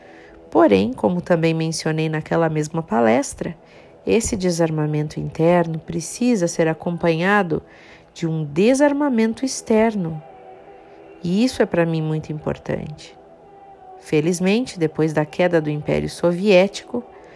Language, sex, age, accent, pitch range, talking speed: Portuguese, female, 50-69, Brazilian, 155-215 Hz, 105 wpm